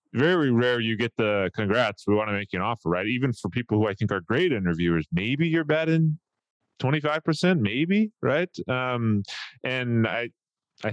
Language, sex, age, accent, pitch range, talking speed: English, male, 20-39, American, 100-125 Hz, 180 wpm